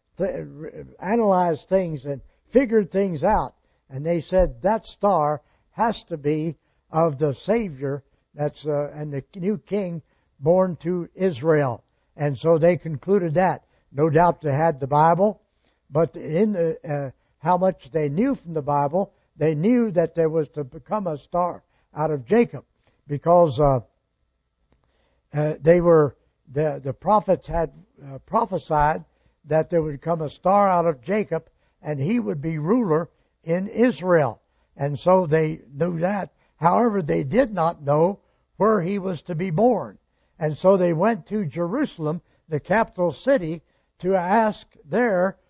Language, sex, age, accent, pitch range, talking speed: English, male, 60-79, American, 150-195 Hz, 155 wpm